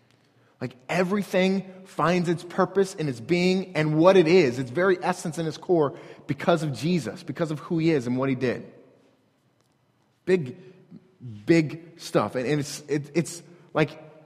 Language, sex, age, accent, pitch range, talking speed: English, male, 30-49, American, 145-185 Hz, 160 wpm